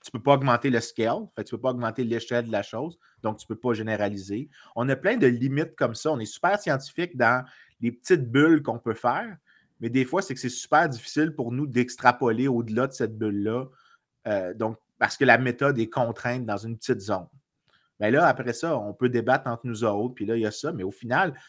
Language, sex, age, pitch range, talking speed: French, male, 30-49, 115-135 Hz, 245 wpm